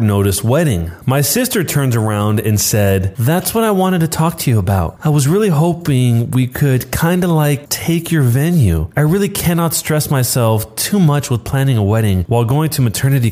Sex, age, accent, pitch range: male, 30-49, American, 105-155 Hz